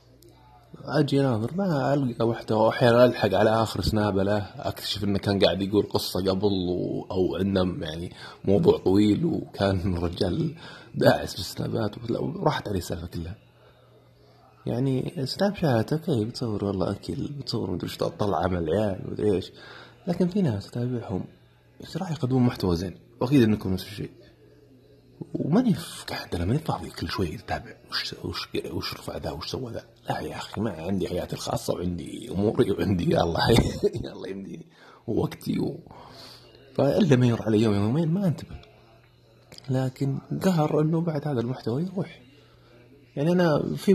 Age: 30-49